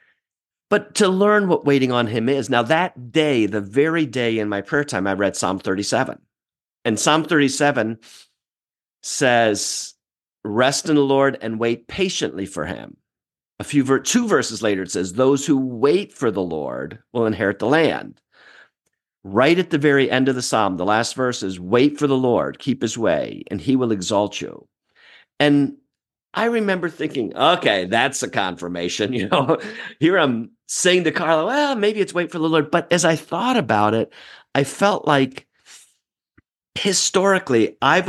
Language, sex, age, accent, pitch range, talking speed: English, male, 50-69, American, 110-160 Hz, 170 wpm